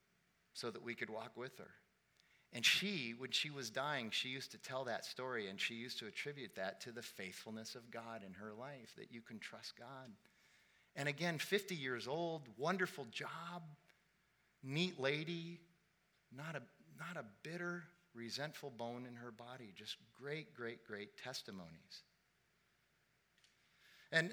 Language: English